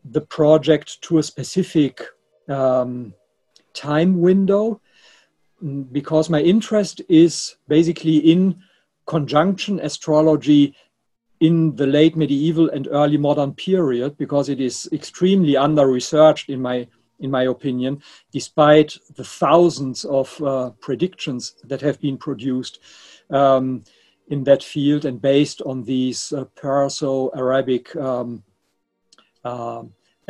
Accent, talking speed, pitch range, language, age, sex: German, 115 wpm, 130-160 Hz, English, 50-69, male